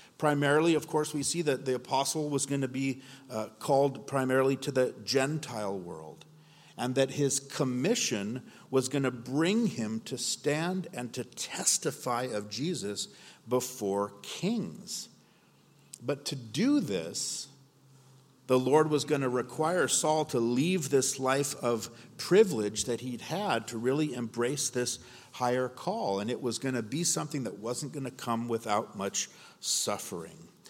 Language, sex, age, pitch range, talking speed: English, male, 50-69, 120-150 Hz, 150 wpm